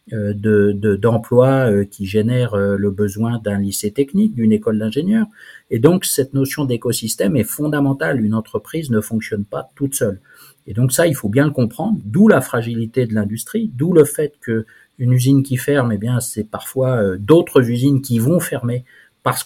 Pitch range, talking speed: 110-135 Hz, 185 wpm